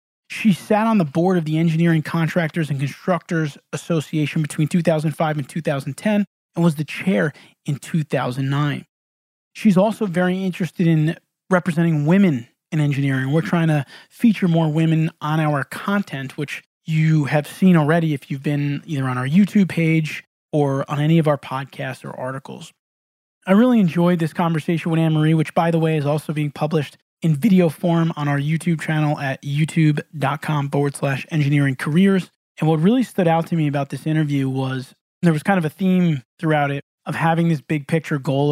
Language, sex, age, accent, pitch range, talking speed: English, male, 20-39, American, 145-170 Hz, 180 wpm